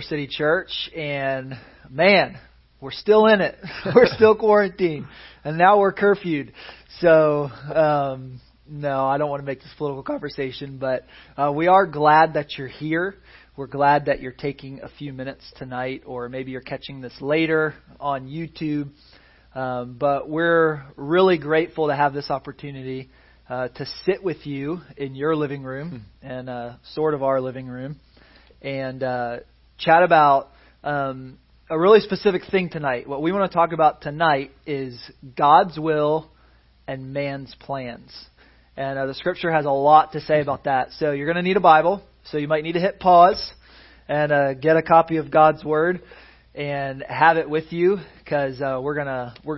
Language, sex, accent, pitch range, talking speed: English, male, American, 135-165 Hz, 170 wpm